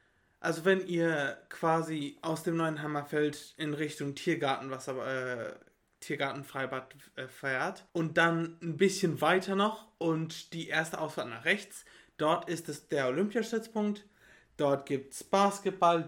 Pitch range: 140-175 Hz